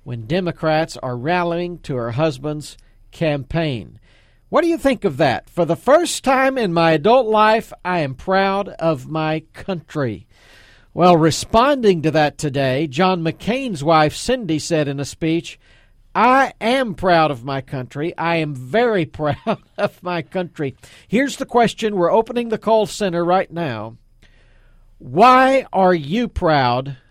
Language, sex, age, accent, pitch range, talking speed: English, male, 50-69, American, 145-200 Hz, 150 wpm